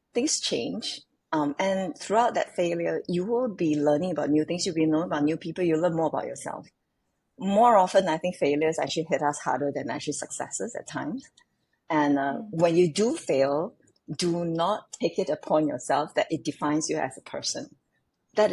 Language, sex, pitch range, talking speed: English, female, 145-185 Hz, 190 wpm